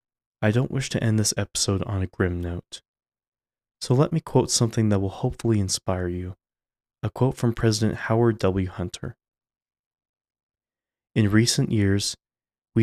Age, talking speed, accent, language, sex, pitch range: 20-39, 150 wpm, American, English, male, 100-120 Hz